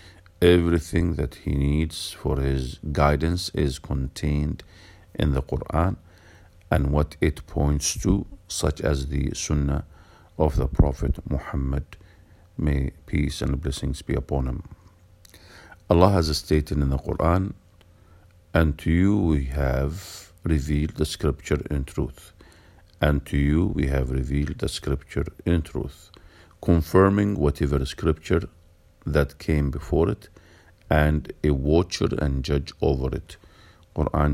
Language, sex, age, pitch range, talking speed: English, male, 50-69, 70-90 Hz, 130 wpm